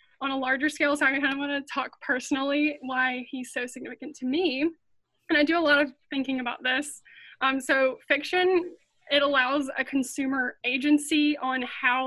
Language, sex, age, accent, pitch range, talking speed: English, female, 20-39, American, 260-290 Hz, 185 wpm